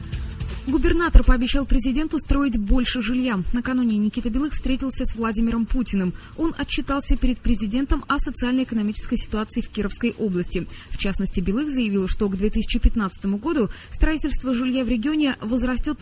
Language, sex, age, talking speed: Russian, female, 20-39, 135 wpm